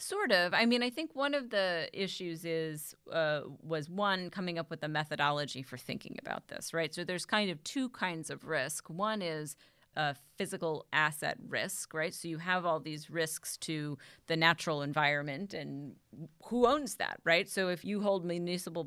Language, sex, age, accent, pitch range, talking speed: English, female, 30-49, American, 155-195 Hz, 190 wpm